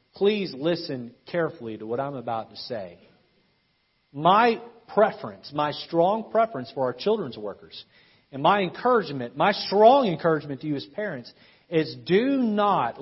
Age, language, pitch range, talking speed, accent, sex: 40-59, English, 145-215 Hz, 145 wpm, American, male